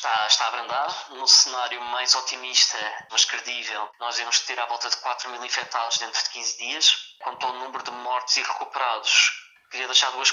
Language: Portuguese